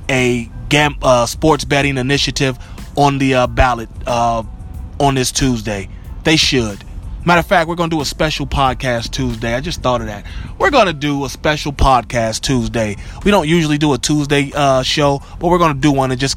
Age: 20-39